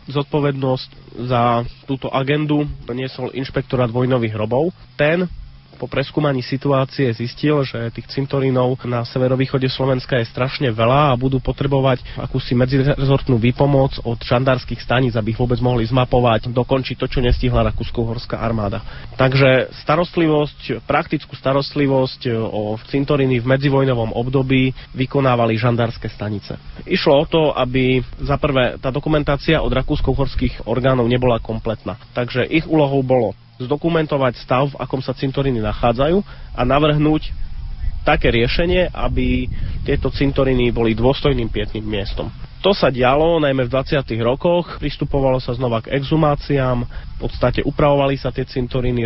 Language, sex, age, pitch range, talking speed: Slovak, male, 30-49, 120-140 Hz, 130 wpm